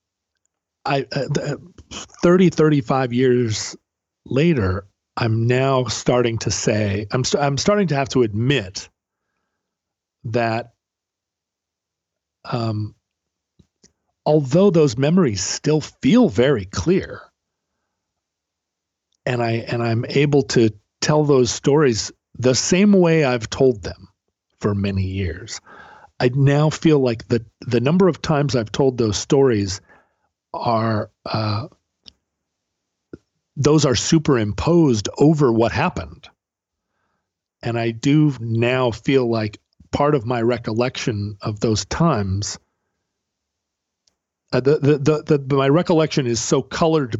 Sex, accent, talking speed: male, American, 115 wpm